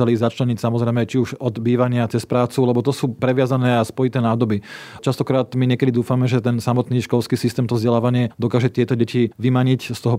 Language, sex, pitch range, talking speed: Slovak, male, 120-130 Hz, 190 wpm